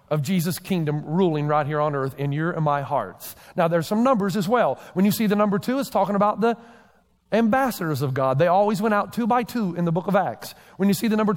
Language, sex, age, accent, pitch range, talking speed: English, male, 40-59, American, 165-220 Hz, 260 wpm